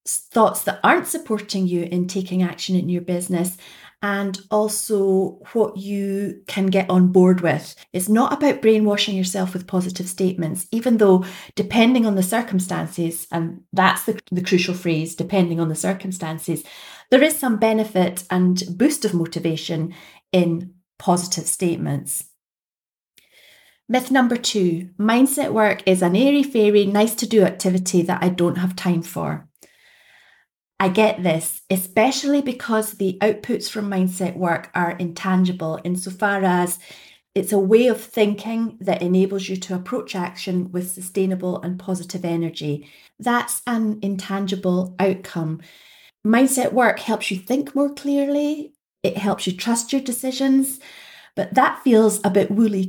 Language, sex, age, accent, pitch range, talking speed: English, female, 30-49, British, 180-225 Hz, 145 wpm